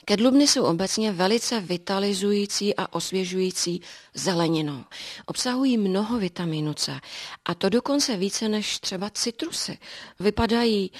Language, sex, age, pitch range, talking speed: Czech, female, 30-49, 185-210 Hz, 110 wpm